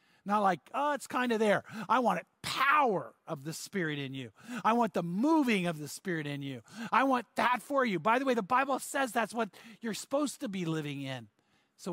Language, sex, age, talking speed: English, male, 50-69, 225 wpm